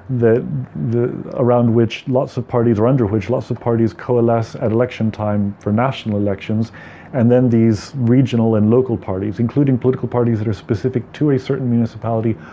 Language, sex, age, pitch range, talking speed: English, male, 30-49, 110-130 Hz, 175 wpm